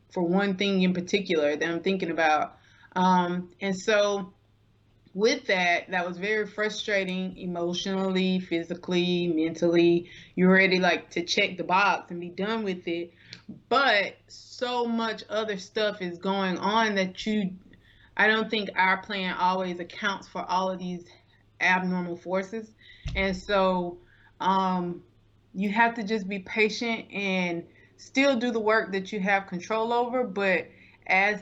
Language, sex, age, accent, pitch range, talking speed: English, female, 20-39, American, 175-200 Hz, 145 wpm